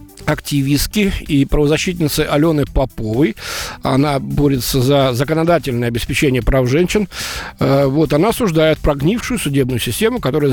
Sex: male